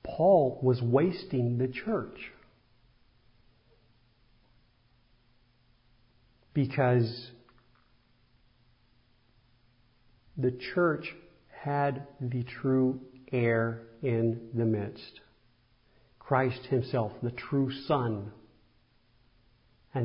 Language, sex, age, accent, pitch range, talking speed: English, male, 50-69, American, 115-130 Hz, 65 wpm